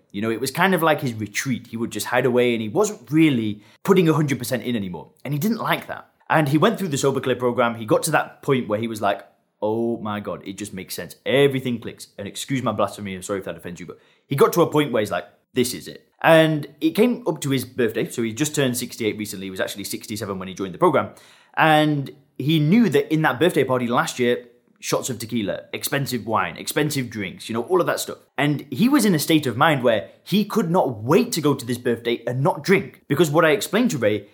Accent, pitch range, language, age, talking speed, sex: British, 115-160 Hz, English, 20-39, 255 wpm, male